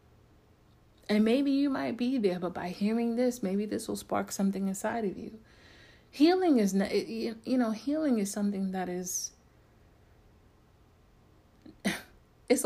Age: 30-49